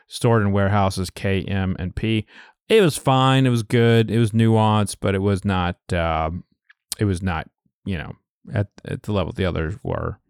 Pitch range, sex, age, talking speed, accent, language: 95-120 Hz, male, 30-49, 190 wpm, American, English